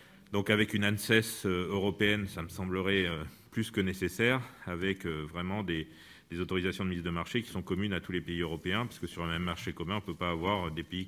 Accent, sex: French, male